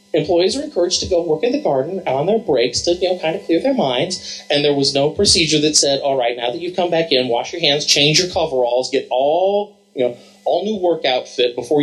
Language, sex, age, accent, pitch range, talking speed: English, male, 30-49, American, 110-165 Hz, 255 wpm